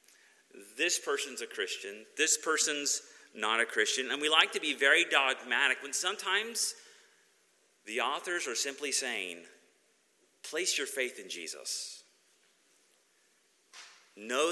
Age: 30-49